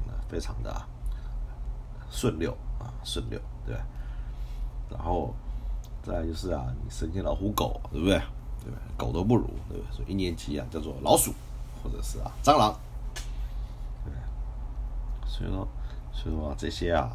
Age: 50-69